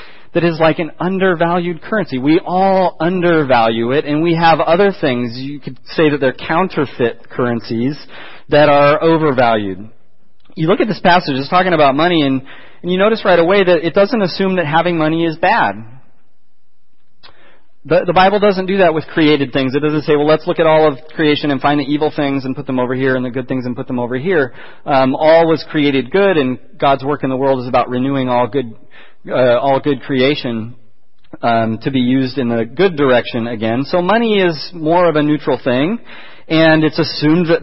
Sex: male